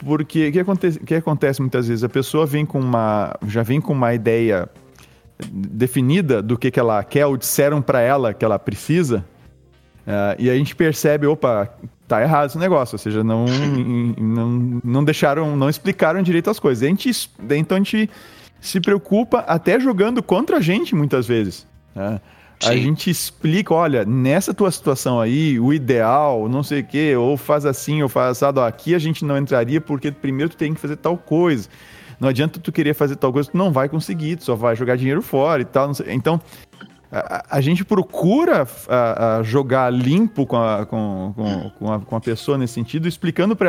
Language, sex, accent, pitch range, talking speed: Portuguese, male, Brazilian, 120-165 Hz, 195 wpm